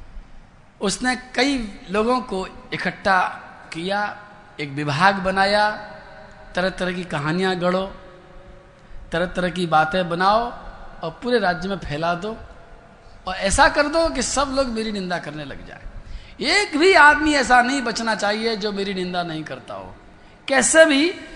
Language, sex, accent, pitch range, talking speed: Hindi, male, native, 165-215 Hz, 145 wpm